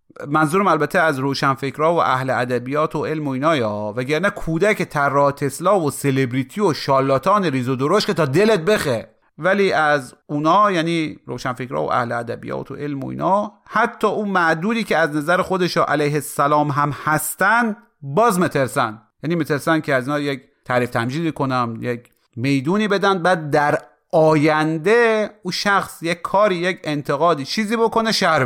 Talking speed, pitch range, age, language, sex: 155 wpm, 130-185 Hz, 30-49, Persian, male